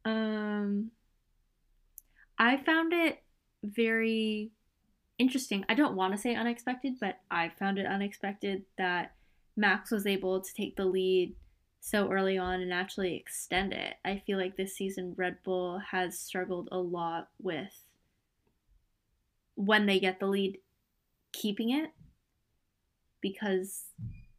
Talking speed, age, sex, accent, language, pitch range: 130 wpm, 10-29, female, American, English, 185-215 Hz